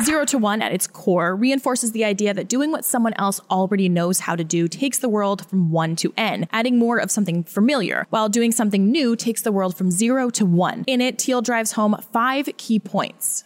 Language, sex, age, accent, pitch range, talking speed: English, female, 20-39, American, 190-260 Hz, 225 wpm